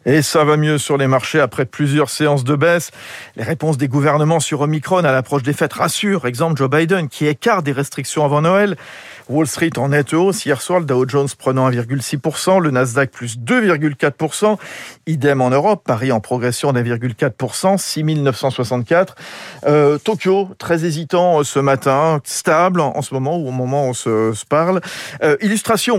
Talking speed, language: 180 wpm, French